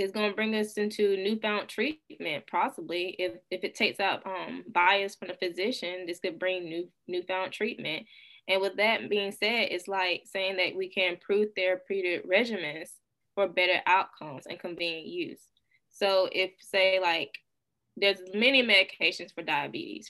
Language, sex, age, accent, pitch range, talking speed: English, female, 10-29, American, 185-215 Hz, 160 wpm